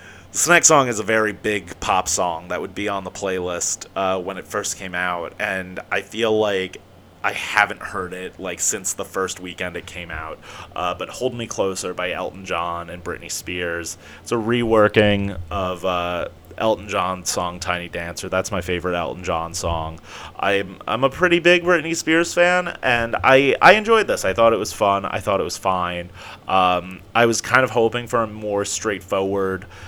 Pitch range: 90-115 Hz